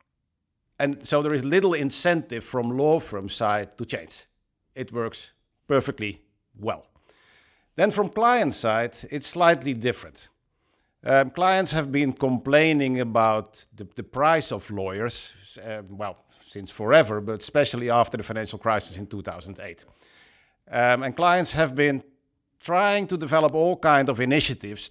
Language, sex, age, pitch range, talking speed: Finnish, male, 50-69, 110-145 Hz, 140 wpm